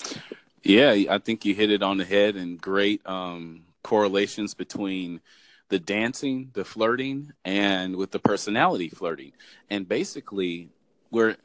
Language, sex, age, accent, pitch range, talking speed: English, male, 30-49, American, 100-125 Hz, 135 wpm